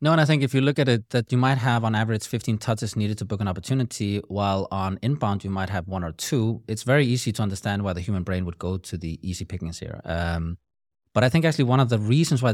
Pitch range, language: 95-125 Hz, English